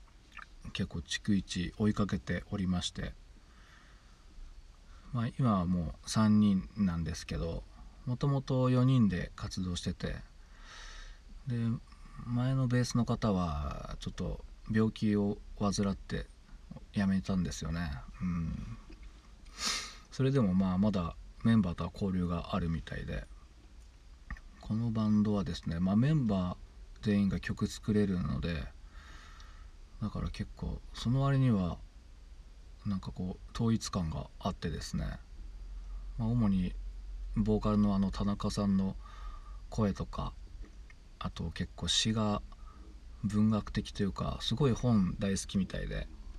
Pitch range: 75-105 Hz